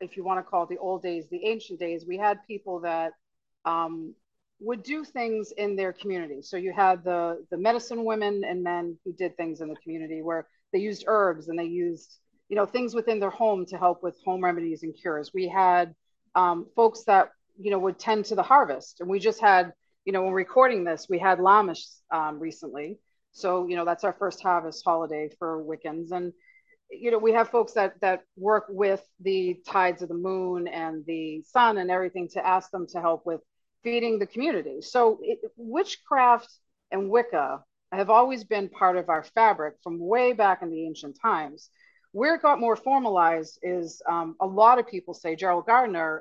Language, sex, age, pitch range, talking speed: English, female, 40-59, 170-225 Hz, 205 wpm